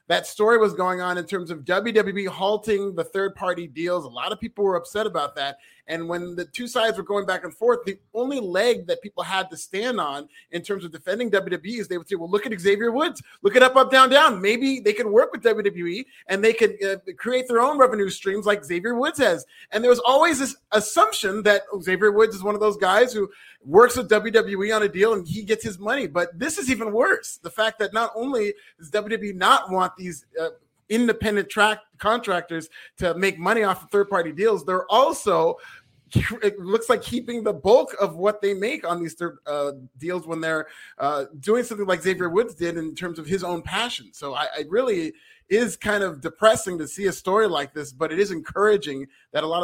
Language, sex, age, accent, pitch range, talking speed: English, male, 30-49, American, 175-225 Hz, 225 wpm